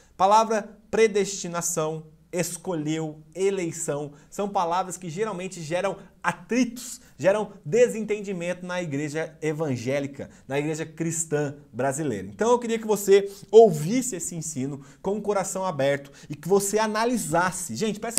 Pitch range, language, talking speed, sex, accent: 175-230 Hz, Portuguese, 120 wpm, male, Brazilian